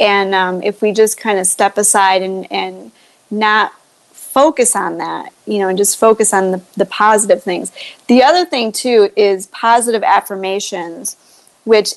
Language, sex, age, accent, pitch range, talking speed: English, female, 30-49, American, 200-250 Hz, 165 wpm